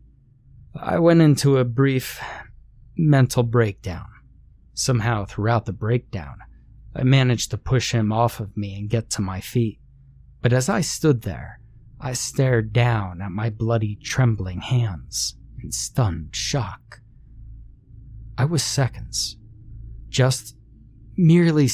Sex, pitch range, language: male, 105-125 Hz, English